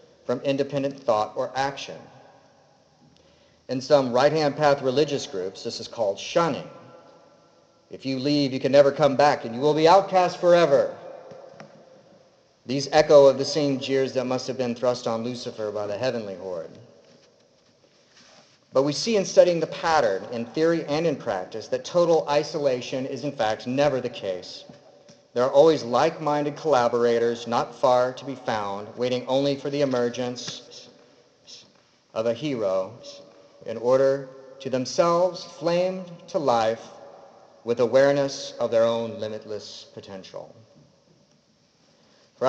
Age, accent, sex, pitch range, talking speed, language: 40-59, American, male, 125-150 Hz, 140 wpm, English